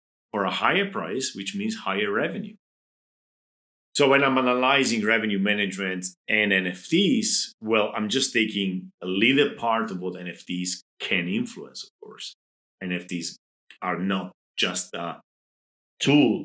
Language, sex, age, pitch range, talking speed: English, male, 40-59, 90-115 Hz, 130 wpm